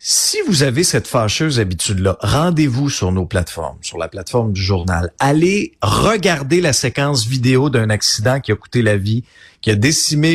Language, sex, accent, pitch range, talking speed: French, male, Canadian, 115-165 Hz, 175 wpm